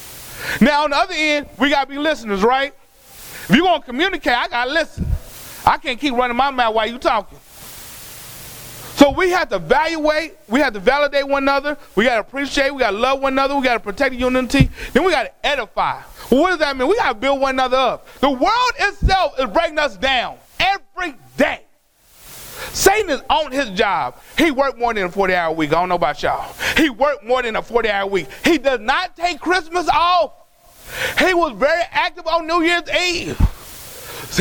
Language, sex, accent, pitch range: English, male, American, 260-325 Hz